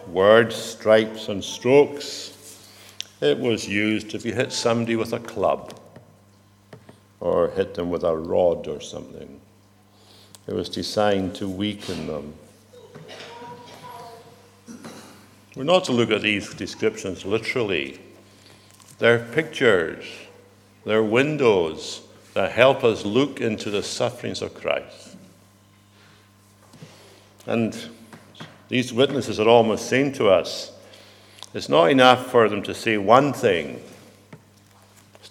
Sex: male